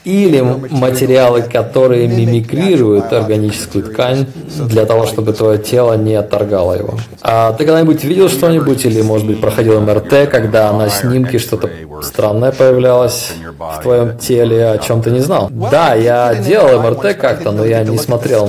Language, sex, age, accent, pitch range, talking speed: Russian, male, 20-39, native, 105-125 Hz, 155 wpm